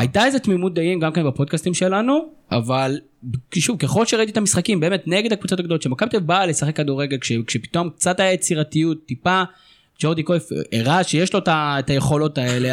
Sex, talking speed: male, 175 wpm